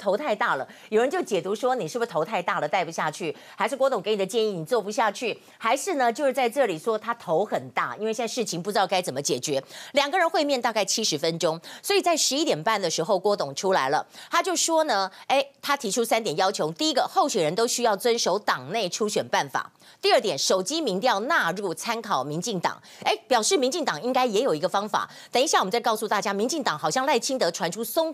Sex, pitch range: female, 210-300 Hz